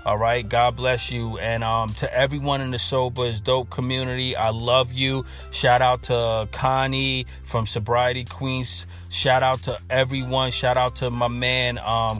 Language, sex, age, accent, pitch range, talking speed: English, male, 30-49, American, 110-130 Hz, 165 wpm